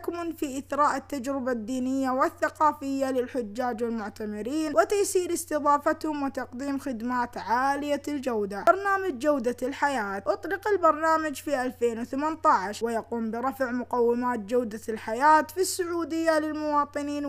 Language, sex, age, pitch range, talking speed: Arabic, female, 20-39, 240-300 Hz, 95 wpm